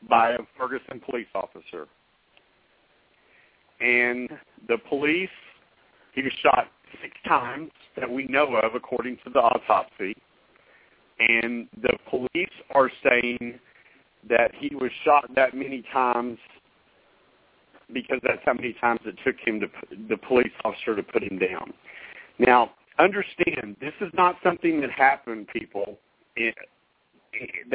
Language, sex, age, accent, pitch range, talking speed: English, male, 50-69, American, 120-160 Hz, 130 wpm